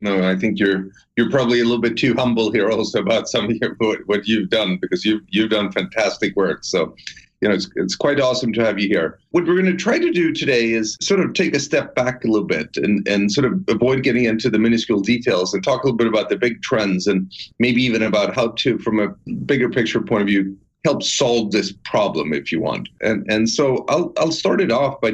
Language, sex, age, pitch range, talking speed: English, male, 40-59, 100-125 Hz, 245 wpm